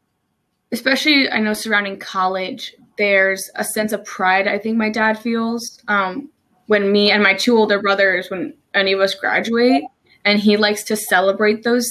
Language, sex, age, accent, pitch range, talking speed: English, female, 20-39, American, 195-235 Hz, 170 wpm